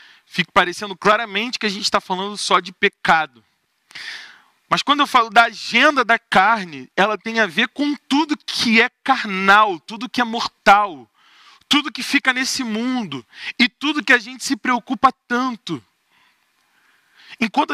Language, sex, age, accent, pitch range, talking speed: Portuguese, male, 20-39, Brazilian, 175-235 Hz, 155 wpm